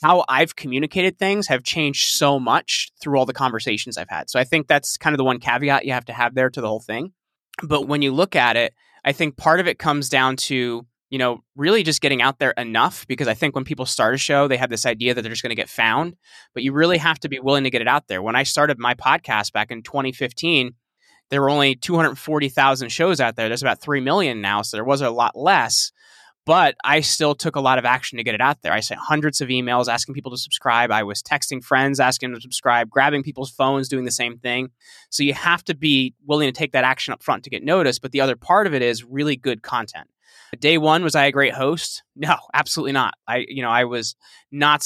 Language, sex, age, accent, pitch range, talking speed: English, male, 20-39, American, 125-150 Hz, 250 wpm